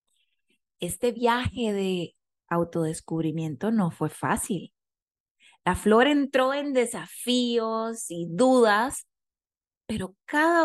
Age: 30-49